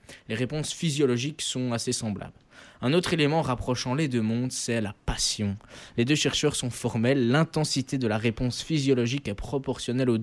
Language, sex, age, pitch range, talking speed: French, male, 20-39, 115-140 Hz, 170 wpm